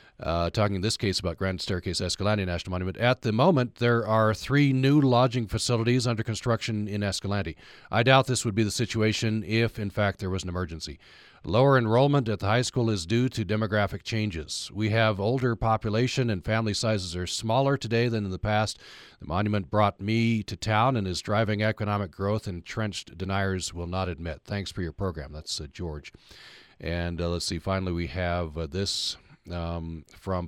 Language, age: English, 40-59